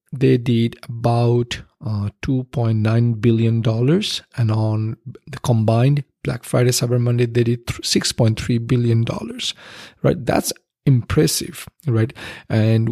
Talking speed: 115 wpm